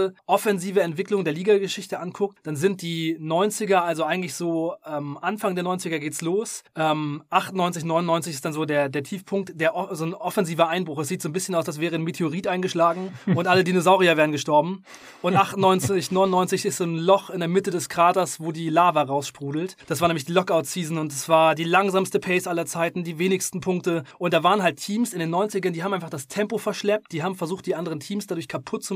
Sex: male